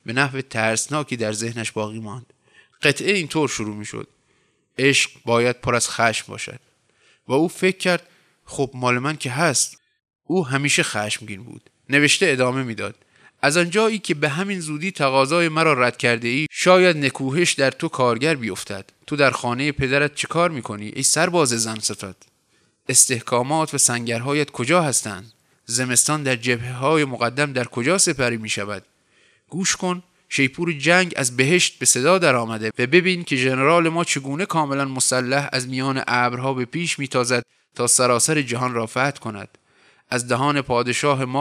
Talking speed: 155 wpm